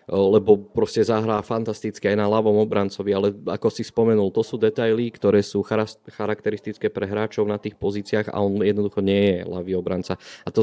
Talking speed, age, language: 180 wpm, 20-39, Slovak